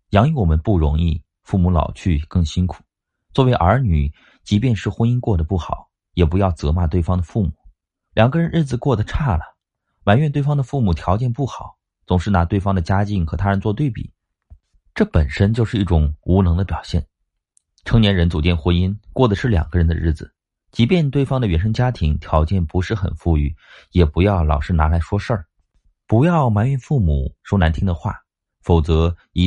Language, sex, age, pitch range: Chinese, male, 30-49, 80-105 Hz